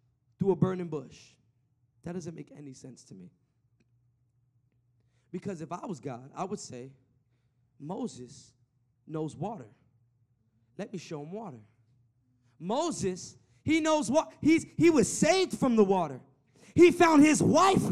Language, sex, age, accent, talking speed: English, male, 20-39, American, 140 wpm